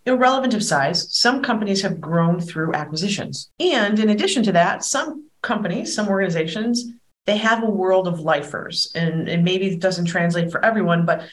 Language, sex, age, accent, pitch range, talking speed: English, female, 40-59, American, 170-240 Hz, 180 wpm